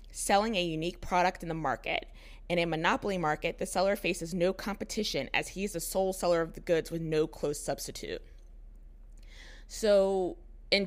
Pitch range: 165-215 Hz